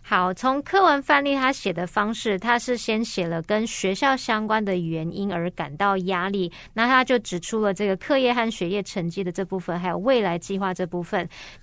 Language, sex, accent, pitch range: Chinese, female, American, 185-235 Hz